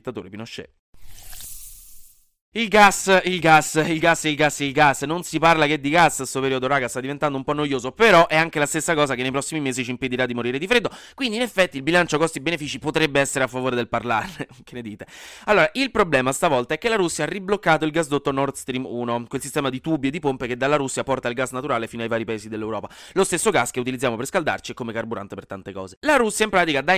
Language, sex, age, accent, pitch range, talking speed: Italian, male, 30-49, native, 120-165 Hz, 250 wpm